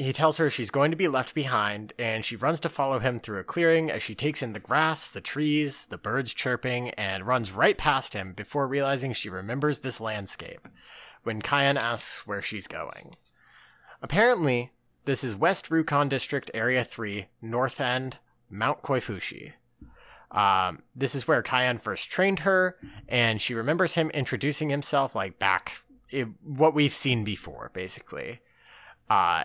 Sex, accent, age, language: male, American, 30-49, English